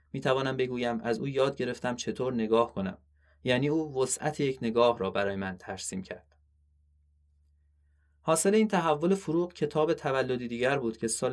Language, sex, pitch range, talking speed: Persian, male, 95-130 Hz, 160 wpm